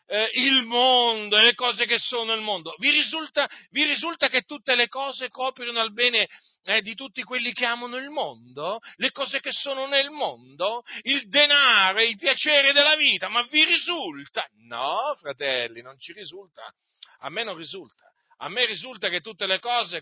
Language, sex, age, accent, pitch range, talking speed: Italian, male, 40-59, native, 190-275 Hz, 180 wpm